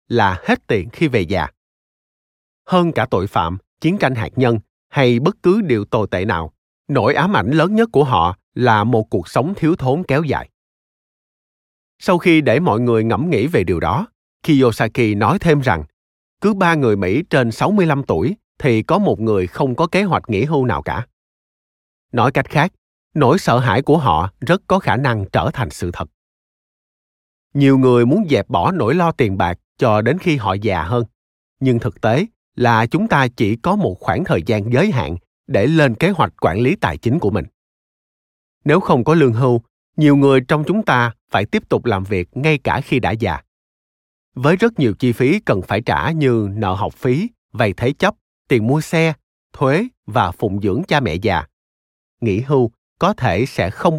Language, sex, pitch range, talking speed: Vietnamese, male, 95-145 Hz, 195 wpm